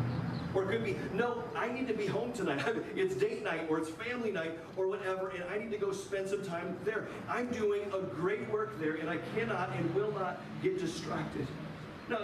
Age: 40-59